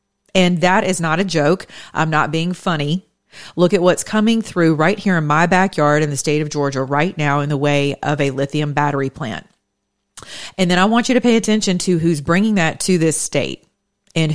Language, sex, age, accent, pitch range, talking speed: English, female, 40-59, American, 145-185 Hz, 215 wpm